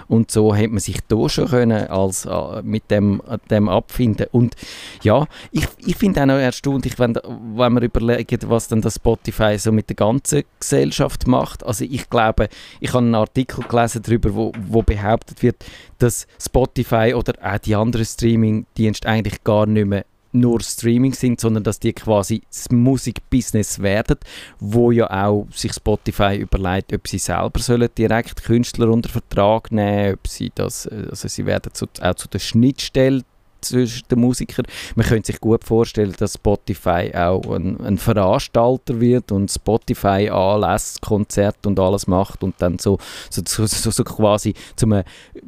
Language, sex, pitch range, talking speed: German, male, 100-120 Hz, 165 wpm